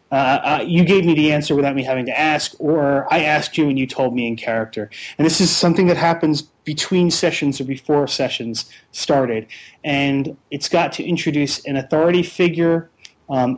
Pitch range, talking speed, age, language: 125-160 Hz, 190 wpm, 30-49, English